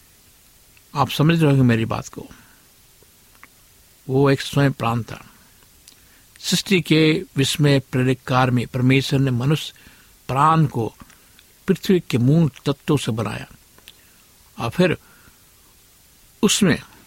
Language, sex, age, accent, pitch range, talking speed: Hindi, male, 60-79, native, 120-145 Hz, 115 wpm